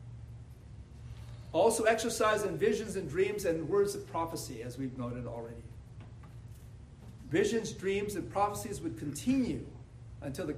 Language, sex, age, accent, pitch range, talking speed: English, male, 50-69, American, 115-195 Hz, 125 wpm